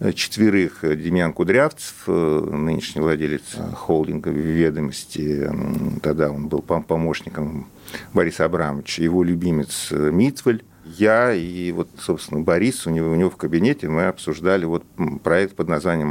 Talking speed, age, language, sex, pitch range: 125 wpm, 40-59, Russian, male, 80-110 Hz